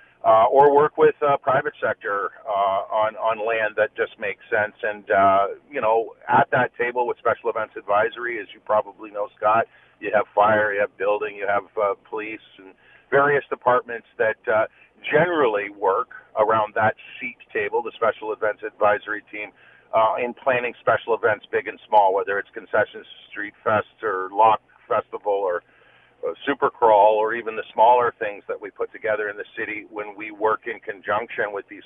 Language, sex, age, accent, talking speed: English, male, 50-69, American, 180 wpm